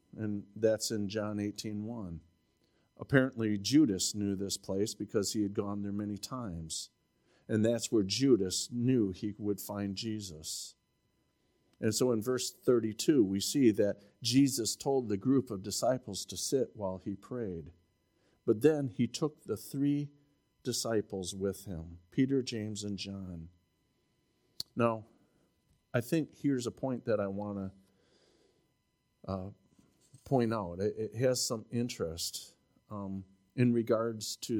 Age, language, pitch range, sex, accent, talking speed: 50-69, English, 100-125 Hz, male, American, 135 wpm